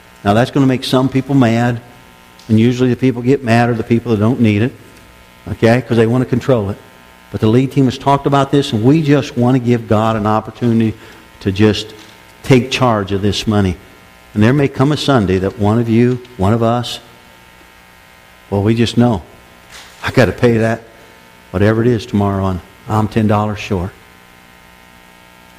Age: 60-79